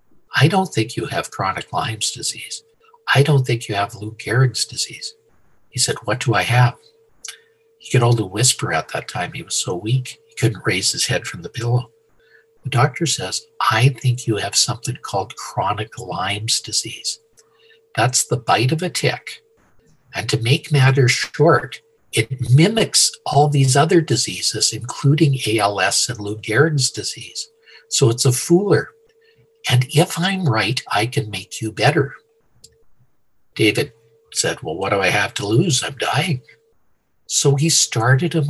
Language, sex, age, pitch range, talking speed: English, male, 60-79, 115-165 Hz, 160 wpm